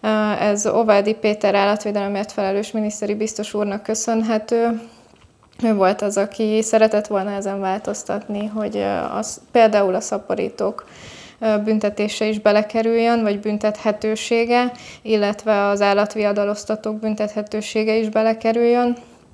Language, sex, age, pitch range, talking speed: Hungarian, female, 20-39, 200-215 Hz, 100 wpm